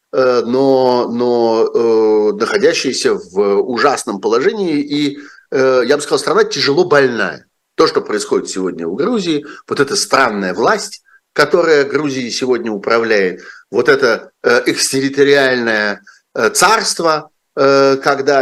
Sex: male